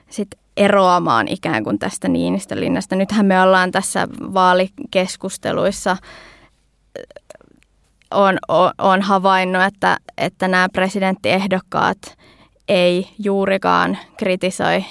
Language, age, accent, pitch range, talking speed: Finnish, 20-39, native, 185-205 Hz, 85 wpm